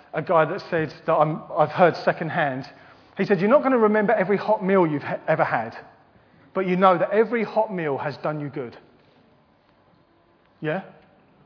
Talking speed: 185 wpm